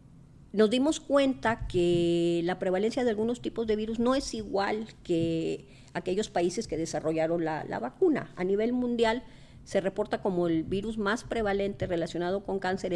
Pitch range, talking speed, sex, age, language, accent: 165-215 Hz, 160 wpm, female, 40-59, Spanish, American